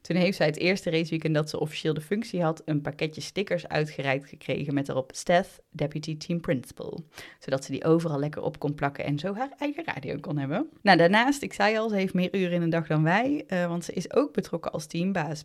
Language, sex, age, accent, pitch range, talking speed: Dutch, female, 20-39, Dutch, 150-180 Hz, 235 wpm